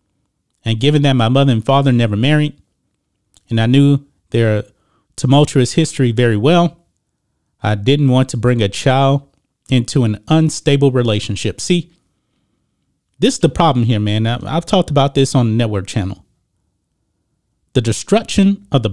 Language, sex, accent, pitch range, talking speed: English, male, American, 110-155 Hz, 150 wpm